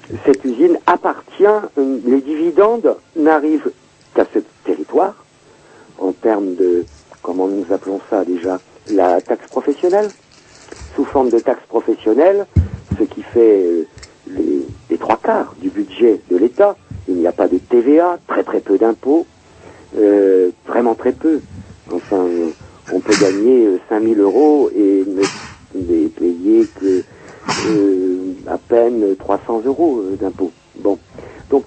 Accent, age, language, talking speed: French, 60-79, French, 130 wpm